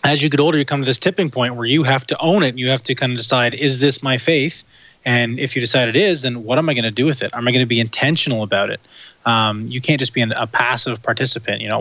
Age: 20-39